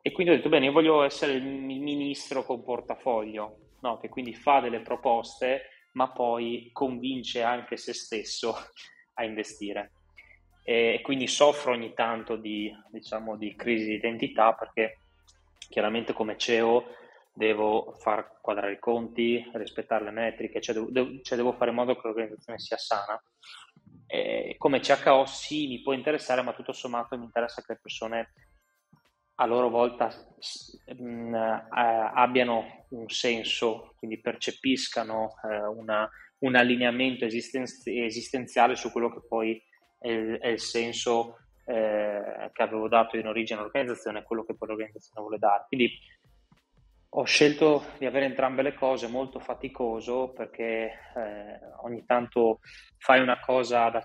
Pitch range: 110-125 Hz